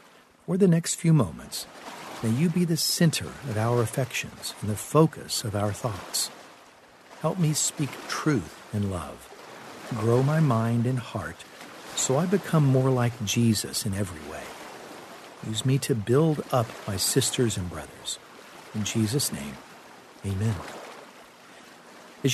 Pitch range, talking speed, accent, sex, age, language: 105-140 Hz, 140 wpm, American, male, 50-69, English